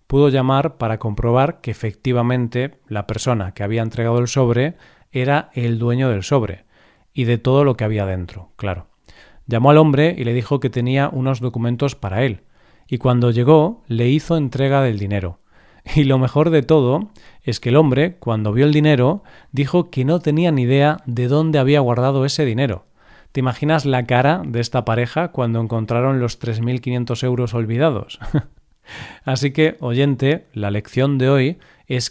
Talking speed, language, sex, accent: 170 wpm, Spanish, male, Spanish